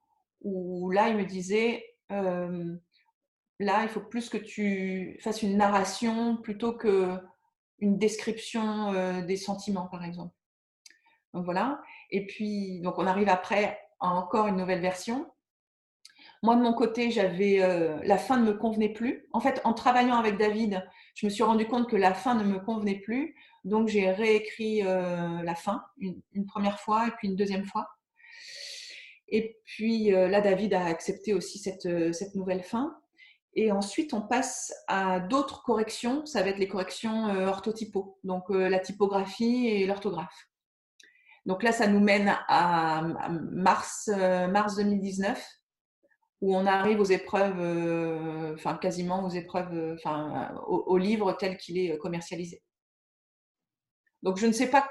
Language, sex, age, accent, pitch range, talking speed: French, female, 30-49, French, 185-230 Hz, 155 wpm